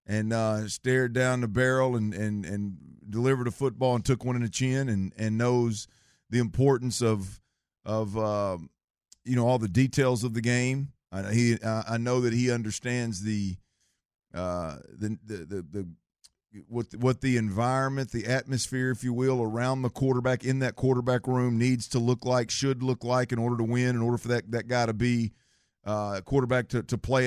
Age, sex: 40-59, male